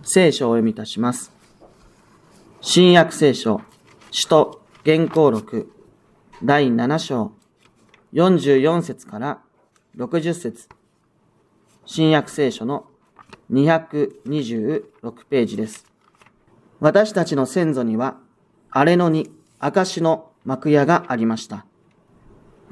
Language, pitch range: Japanese, 140-180 Hz